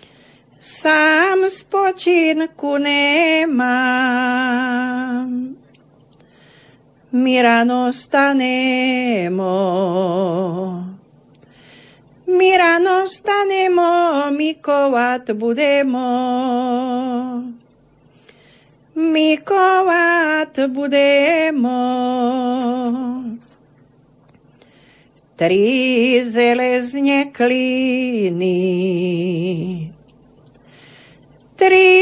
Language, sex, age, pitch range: Slovak, female, 40-59, 245-315 Hz